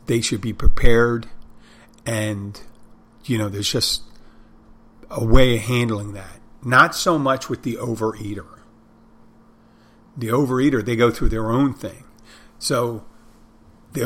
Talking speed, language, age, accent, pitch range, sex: 130 wpm, English, 50-69, American, 110-130 Hz, male